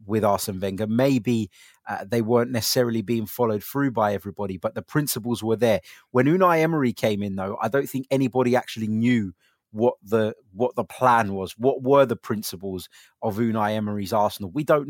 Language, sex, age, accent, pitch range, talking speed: English, male, 30-49, British, 105-125 Hz, 185 wpm